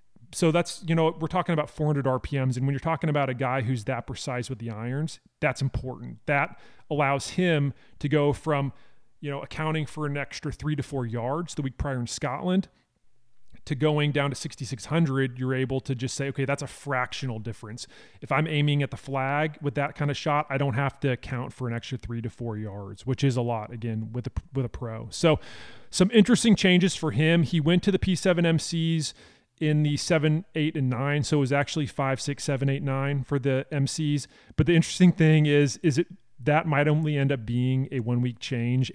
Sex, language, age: male, English, 30-49